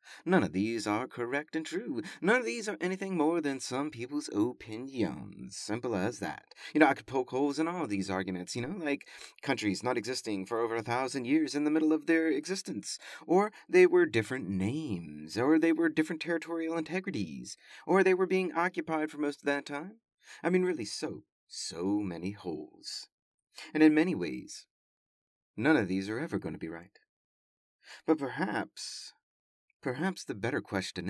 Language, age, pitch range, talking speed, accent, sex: English, 30-49, 115-180 Hz, 185 wpm, American, male